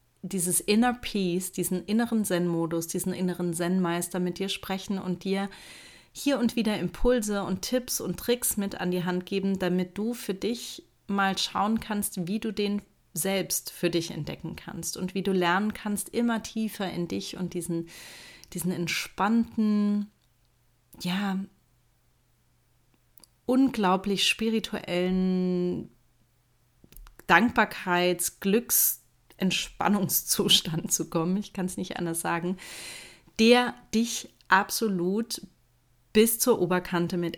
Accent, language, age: German, German, 30-49